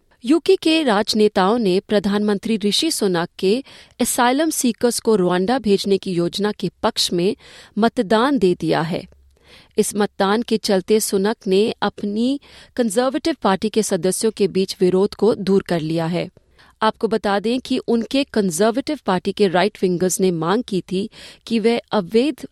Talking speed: 155 wpm